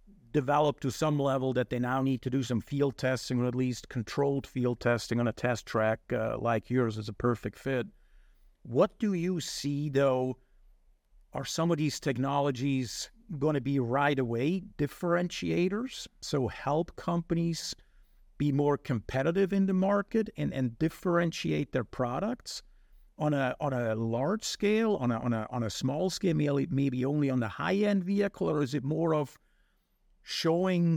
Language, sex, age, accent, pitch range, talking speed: English, male, 50-69, American, 125-155 Hz, 170 wpm